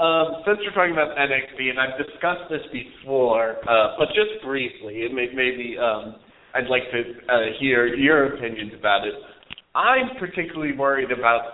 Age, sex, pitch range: 40-59, male, 120-160 Hz